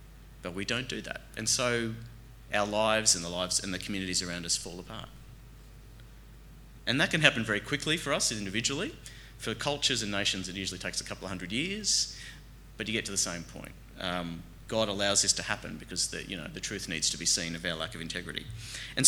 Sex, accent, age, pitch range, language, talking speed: male, Australian, 30-49, 90-120 Hz, English, 215 wpm